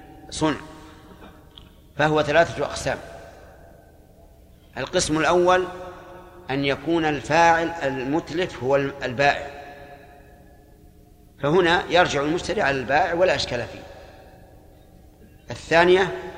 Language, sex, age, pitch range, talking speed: Arabic, male, 50-69, 135-170 Hz, 75 wpm